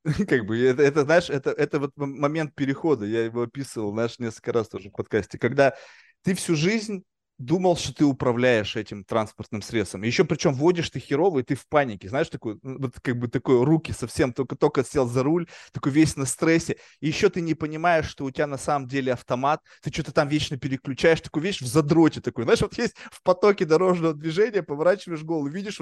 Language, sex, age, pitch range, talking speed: Russian, male, 20-39, 125-165 Hz, 200 wpm